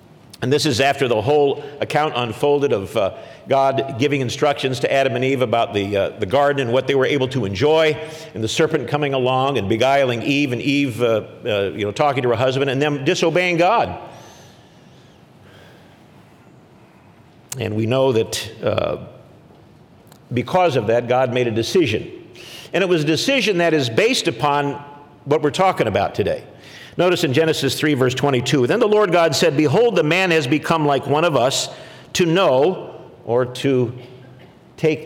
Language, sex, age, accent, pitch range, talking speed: English, male, 50-69, American, 125-155 Hz, 175 wpm